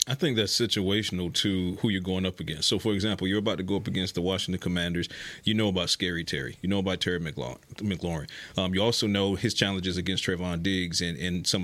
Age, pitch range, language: 30-49, 90-105 Hz, English